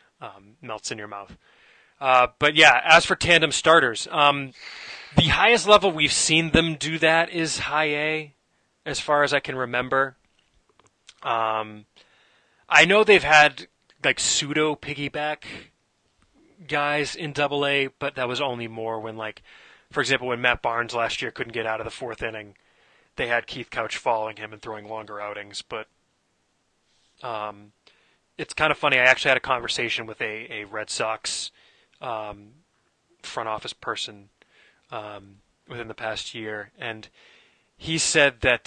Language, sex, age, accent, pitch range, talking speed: English, male, 20-39, American, 110-145 Hz, 160 wpm